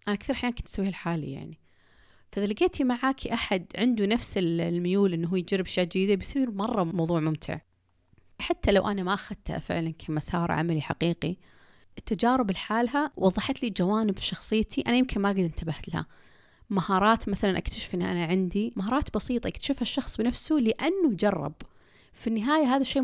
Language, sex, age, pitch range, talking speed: Arabic, female, 30-49, 175-250 Hz, 160 wpm